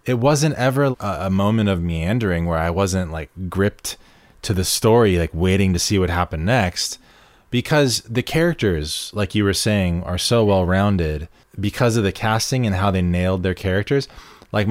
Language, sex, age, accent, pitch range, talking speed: English, male, 20-39, American, 95-120 Hz, 175 wpm